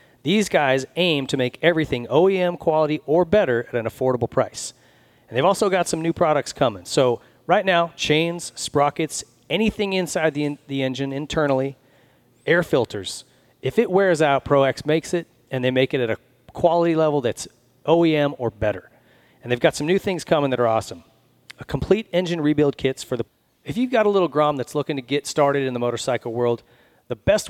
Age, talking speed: 40-59, 195 wpm